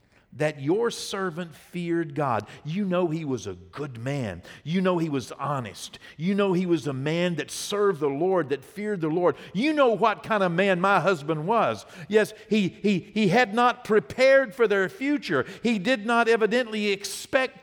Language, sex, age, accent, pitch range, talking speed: English, male, 50-69, American, 130-215 Hz, 185 wpm